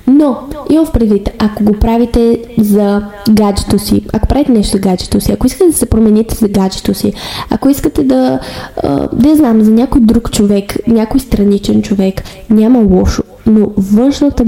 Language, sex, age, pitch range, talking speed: Bulgarian, female, 10-29, 200-235 Hz, 165 wpm